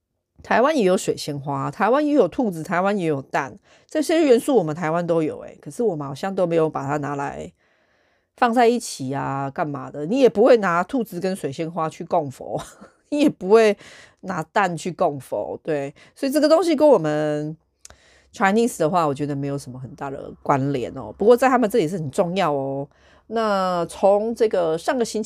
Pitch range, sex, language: 140-200 Hz, female, Chinese